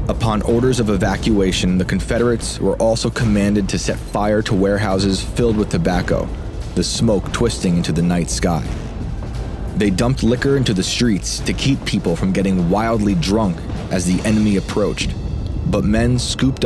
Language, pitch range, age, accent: English, 95-115 Hz, 30-49, American